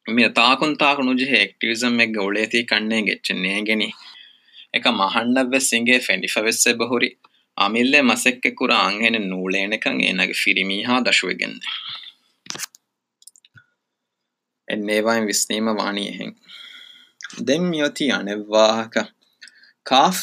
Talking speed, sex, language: 130 wpm, male, Urdu